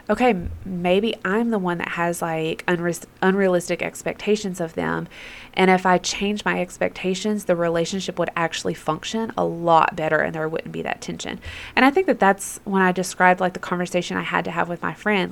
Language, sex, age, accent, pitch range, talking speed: English, female, 20-39, American, 175-210 Hz, 195 wpm